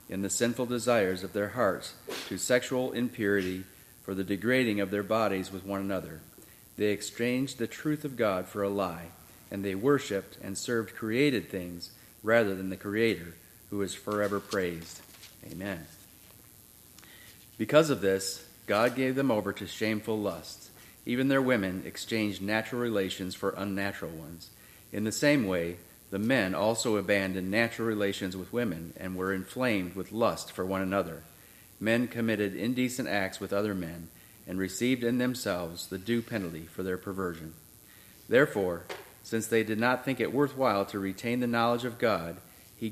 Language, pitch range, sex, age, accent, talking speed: English, 95-115 Hz, male, 40-59, American, 160 wpm